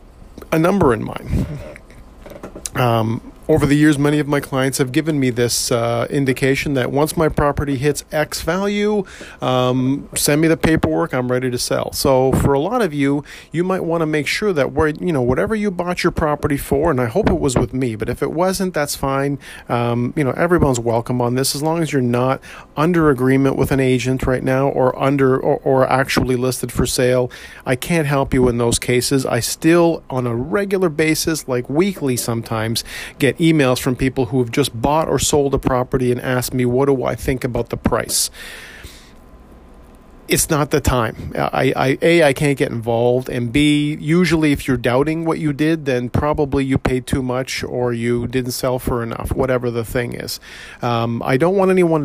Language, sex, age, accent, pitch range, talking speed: English, male, 40-59, American, 125-155 Hz, 200 wpm